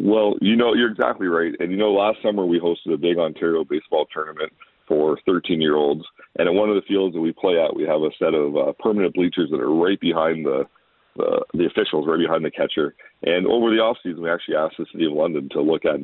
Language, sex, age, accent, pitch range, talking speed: English, male, 40-59, American, 80-105 Hz, 245 wpm